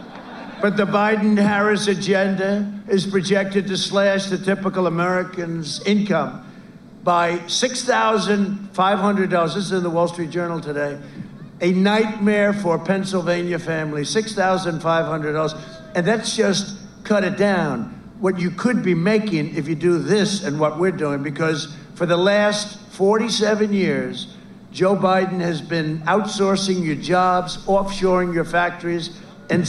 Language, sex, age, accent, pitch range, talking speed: English, male, 60-79, American, 175-210 Hz, 130 wpm